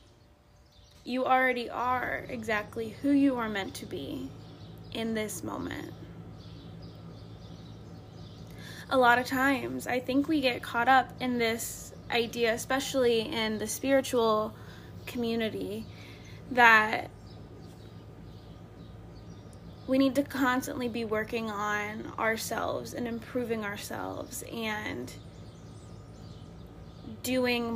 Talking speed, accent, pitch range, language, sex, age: 95 wpm, American, 210-255 Hz, English, female, 10-29